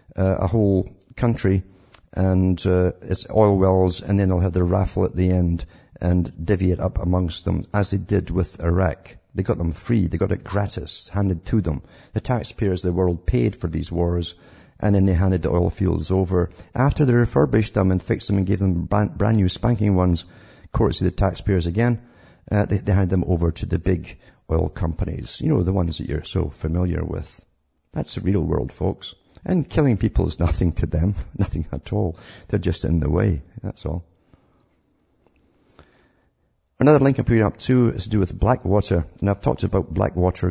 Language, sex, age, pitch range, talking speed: English, male, 50-69, 90-105 Hz, 200 wpm